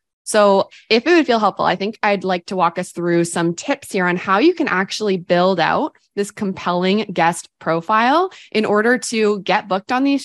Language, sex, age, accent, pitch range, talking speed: English, female, 20-39, American, 180-245 Hz, 205 wpm